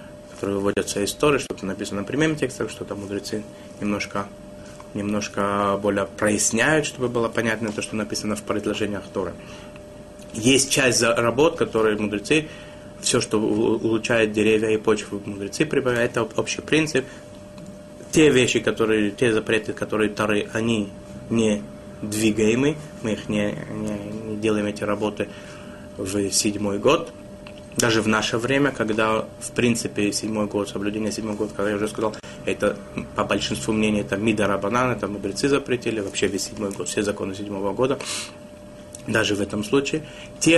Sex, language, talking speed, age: male, Russian, 150 wpm, 20-39